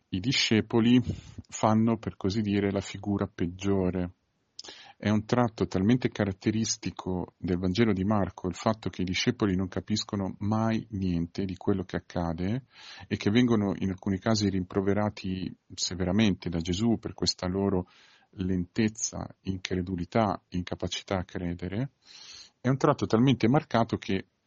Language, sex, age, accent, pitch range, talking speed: Italian, male, 40-59, native, 90-110 Hz, 135 wpm